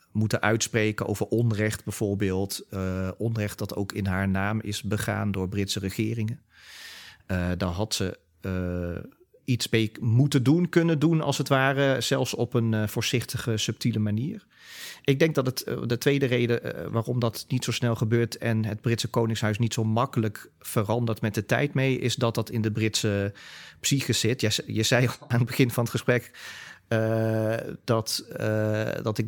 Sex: male